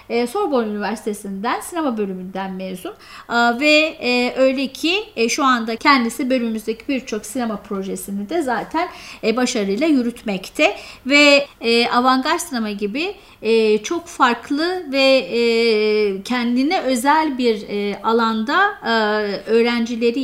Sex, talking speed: female, 90 wpm